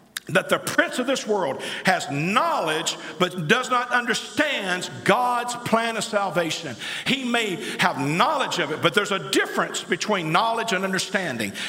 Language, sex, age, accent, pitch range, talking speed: English, male, 50-69, American, 185-245 Hz, 155 wpm